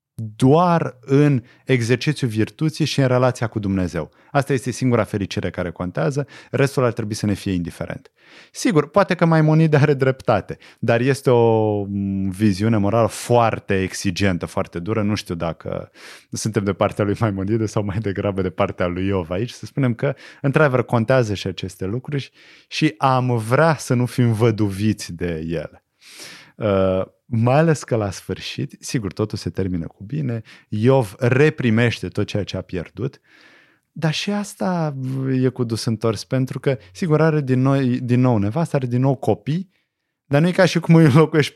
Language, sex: Romanian, male